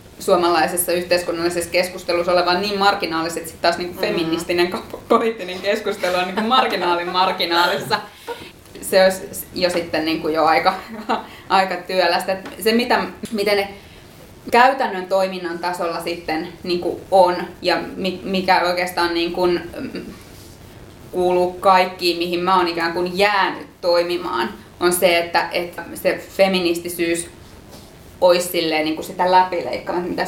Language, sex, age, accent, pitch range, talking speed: Finnish, female, 20-39, native, 175-195 Hz, 125 wpm